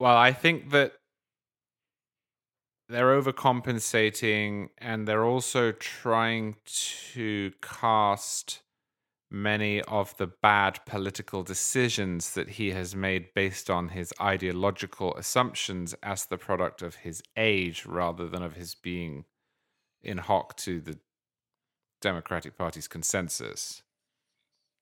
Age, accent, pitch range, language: 30-49, British, 95-115 Hz, English